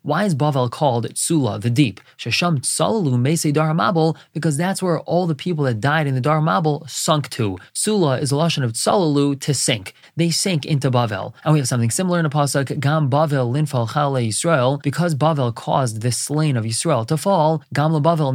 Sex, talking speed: male, 190 wpm